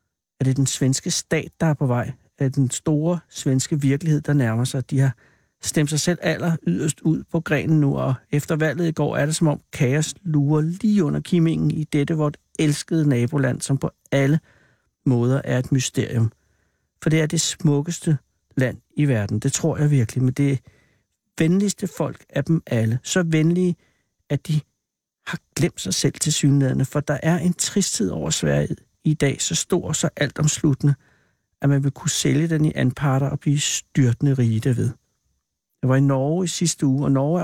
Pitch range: 130-160 Hz